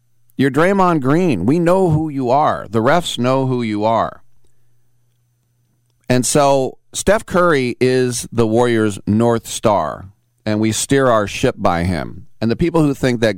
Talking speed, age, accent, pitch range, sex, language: 160 wpm, 40-59, American, 100-120 Hz, male, English